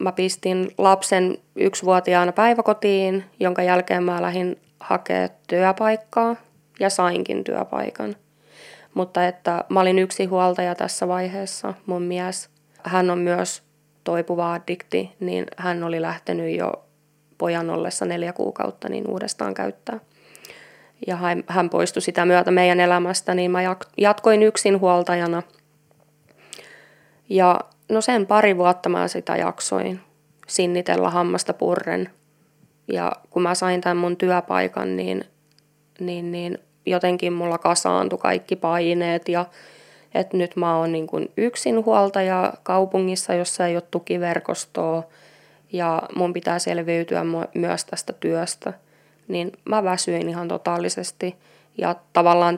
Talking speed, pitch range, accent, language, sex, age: 120 wpm, 170-185 Hz, native, Finnish, female, 20-39